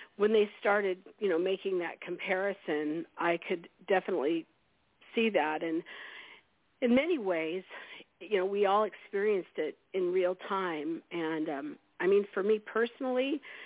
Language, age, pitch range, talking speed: English, 50-69, 175-210 Hz, 145 wpm